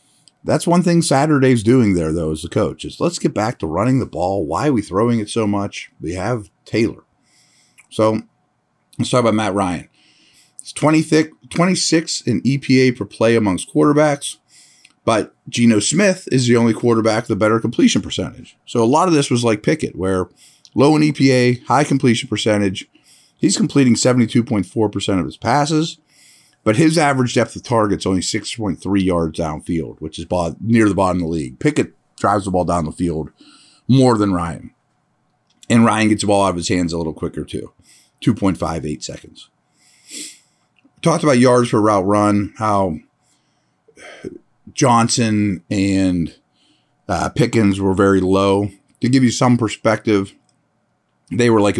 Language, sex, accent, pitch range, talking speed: English, male, American, 95-130 Hz, 170 wpm